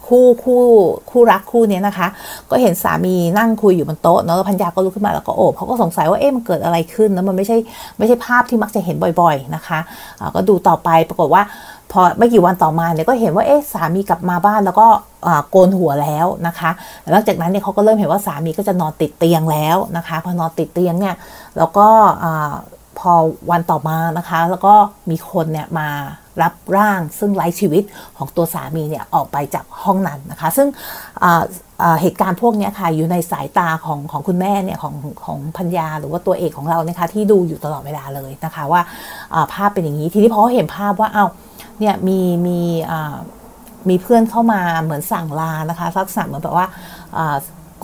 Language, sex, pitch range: Thai, female, 165-205 Hz